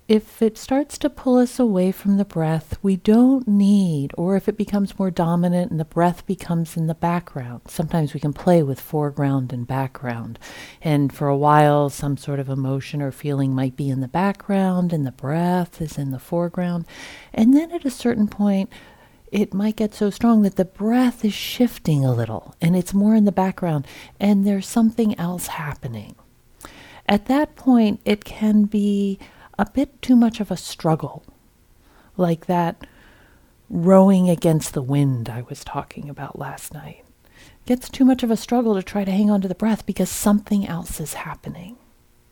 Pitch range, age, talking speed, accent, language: 160-215 Hz, 50-69, 185 wpm, American, English